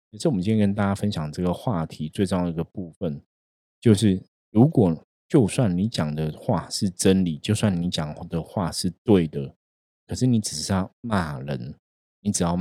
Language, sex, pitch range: Chinese, male, 80-100 Hz